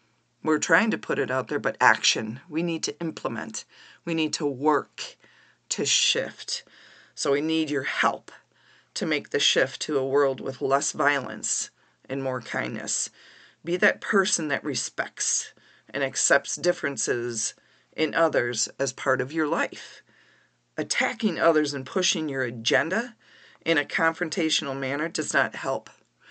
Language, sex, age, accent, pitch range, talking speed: English, female, 40-59, American, 135-180 Hz, 150 wpm